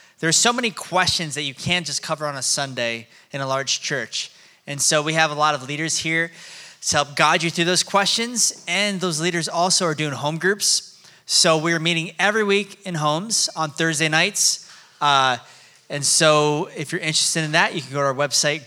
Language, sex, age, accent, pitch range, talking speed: English, male, 20-39, American, 140-185 Hz, 210 wpm